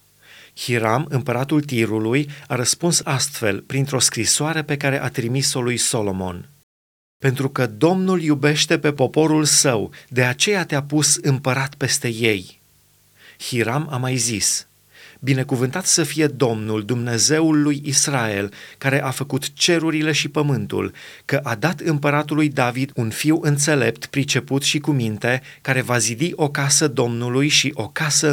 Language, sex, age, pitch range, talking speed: Romanian, male, 30-49, 120-150 Hz, 140 wpm